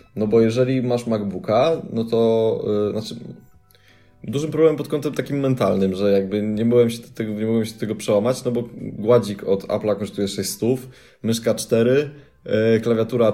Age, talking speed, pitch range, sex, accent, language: 20-39, 180 wpm, 105-120 Hz, male, native, Polish